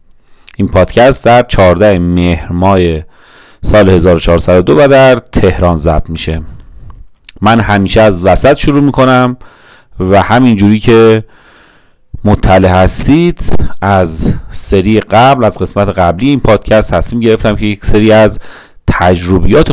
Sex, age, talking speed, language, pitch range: male, 30-49, 120 wpm, Persian, 95-115 Hz